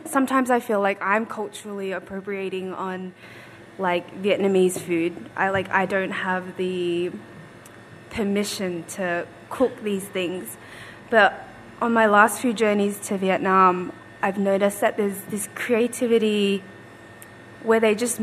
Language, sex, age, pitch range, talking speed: English, female, 20-39, 170-205 Hz, 130 wpm